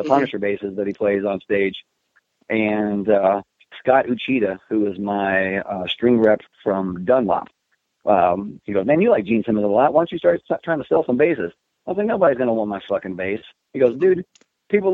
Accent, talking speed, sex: American, 215 wpm, male